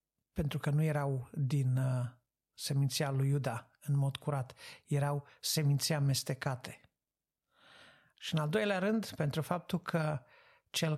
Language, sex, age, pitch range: Romanian, male, 50-69, 130-155 Hz